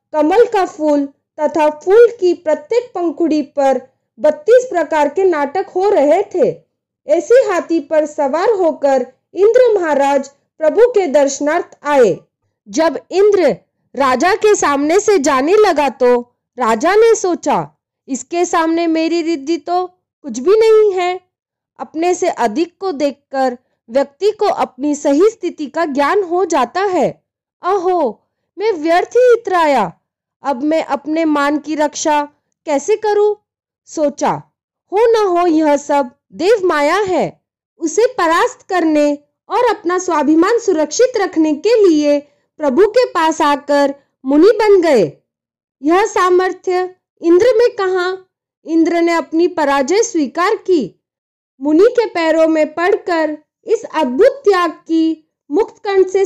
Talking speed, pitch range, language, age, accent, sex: 135 wpm, 295-390 Hz, Hindi, 20-39, native, female